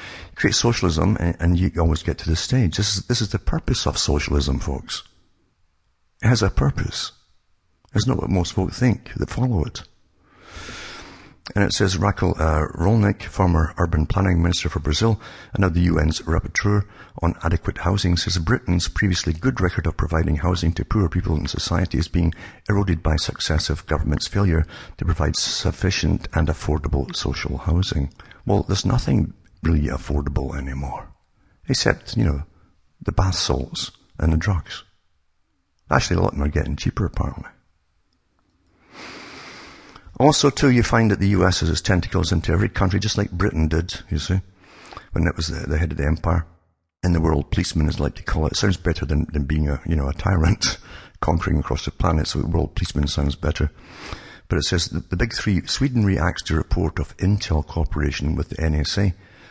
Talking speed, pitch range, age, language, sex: 180 wpm, 80-100 Hz, 60-79, English, male